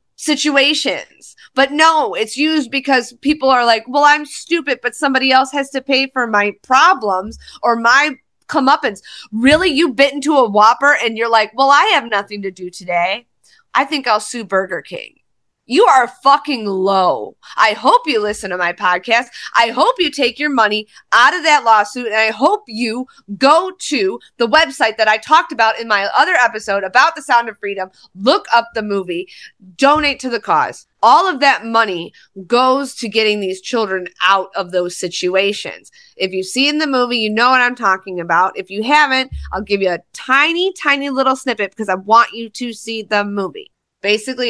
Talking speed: 190 wpm